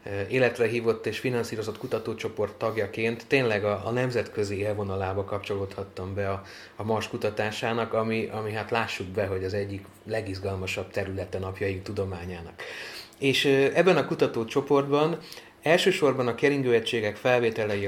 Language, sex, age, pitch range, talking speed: Hungarian, male, 30-49, 100-130 Hz, 120 wpm